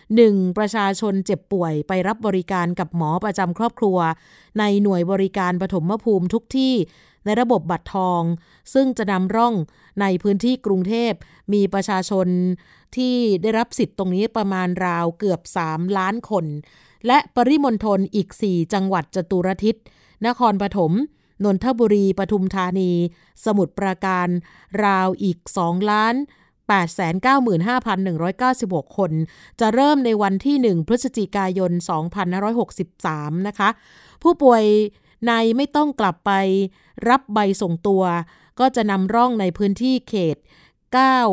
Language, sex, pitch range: Thai, female, 180-225 Hz